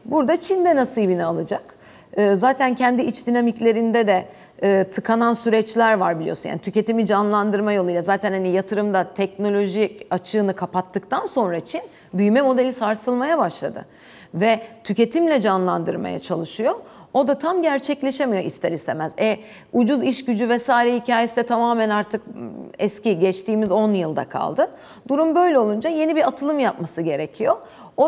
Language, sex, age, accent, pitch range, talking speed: Turkish, female, 40-59, native, 195-260 Hz, 130 wpm